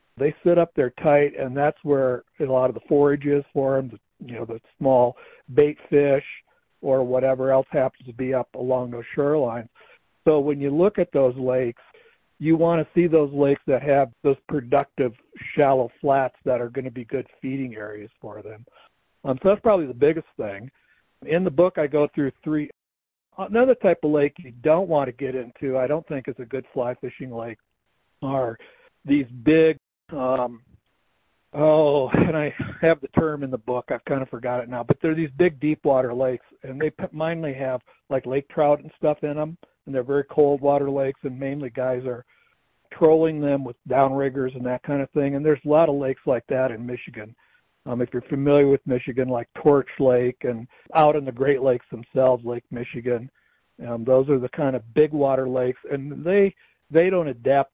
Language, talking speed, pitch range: English, 200 wpm, 125-150 Hz